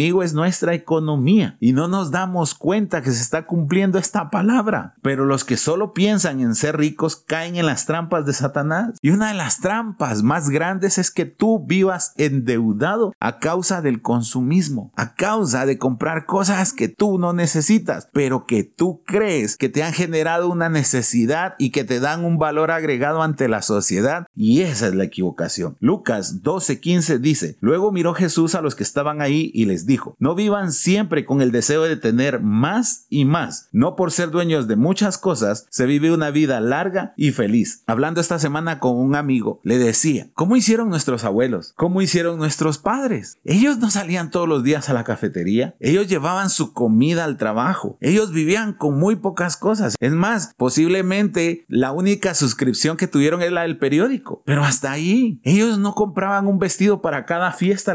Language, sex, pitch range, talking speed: Spanish, male, 140-190 Hz, 185 wpm